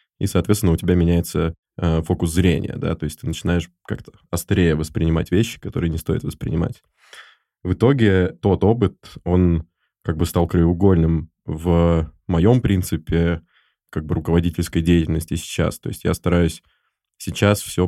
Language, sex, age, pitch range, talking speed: Russian, male, 20-39, 80-90 Hz, 145 wpm